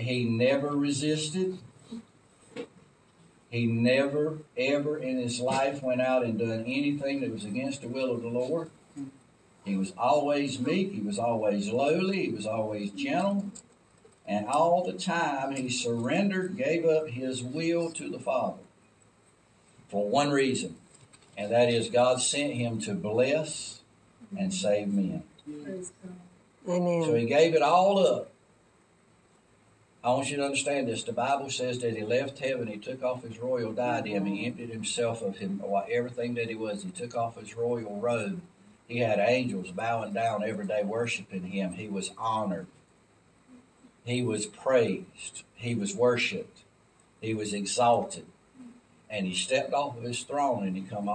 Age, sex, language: 60-79, male, English